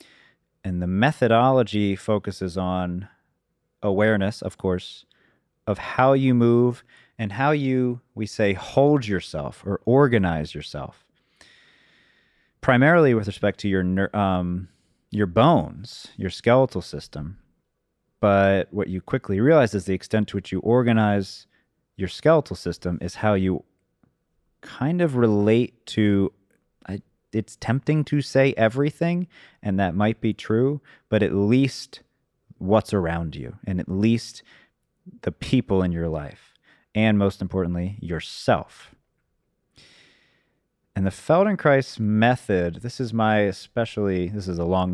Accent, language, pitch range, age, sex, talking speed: American, English, 95-120 Hz, 30-49, male, 125 wpm